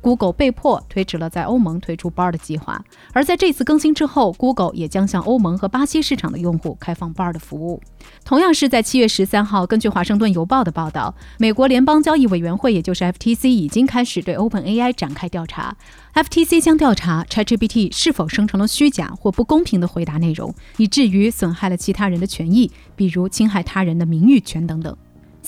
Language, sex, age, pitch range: Chinese, female, 30-49, 175-260 Hz